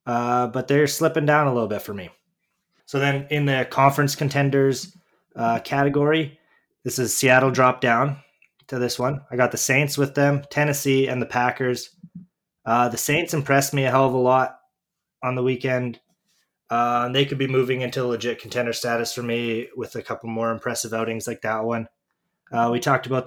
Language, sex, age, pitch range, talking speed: English, male, 20-39, 120-140 Hz, 190 wpm